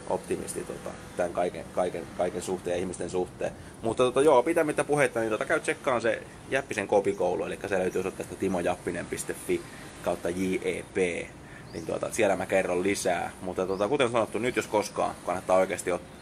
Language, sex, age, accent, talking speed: Finnish, male, 20-39, native, 160 wpm